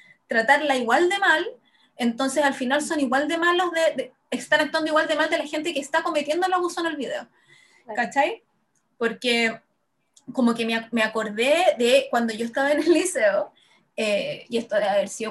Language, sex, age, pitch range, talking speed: Spanish, female, 20-39, 230-295 Hz, 195 wpm